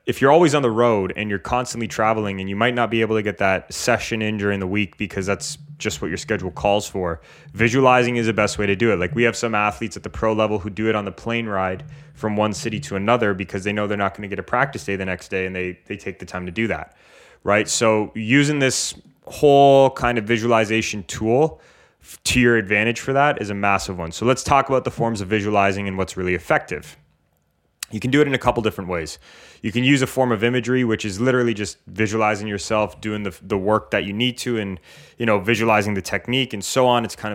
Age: 20-39